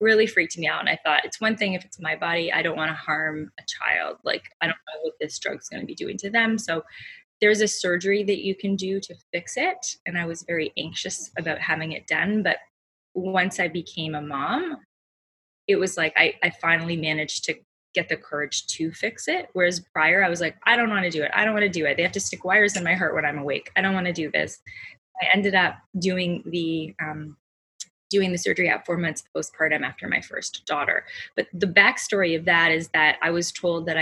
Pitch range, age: 165-205 Hz, 20-39